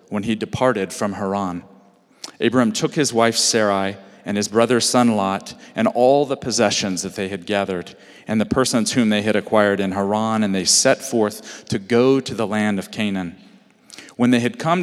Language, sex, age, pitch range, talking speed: English, male, 40-59, 100-125 Hz, 190 wpm